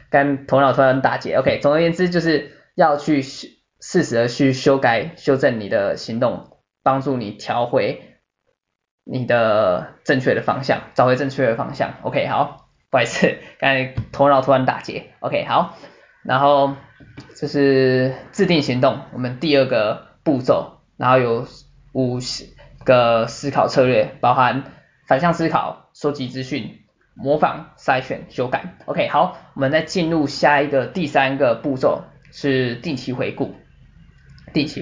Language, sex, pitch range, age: Chinese, male, 125-145 Hz, 20-39